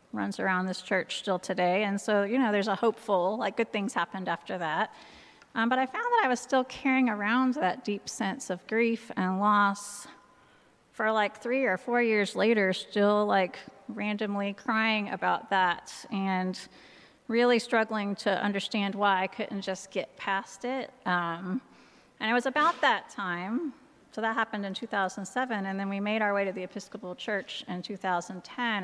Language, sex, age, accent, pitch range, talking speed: English, female, 30-49, American, 190-230 Hz, 175 wpm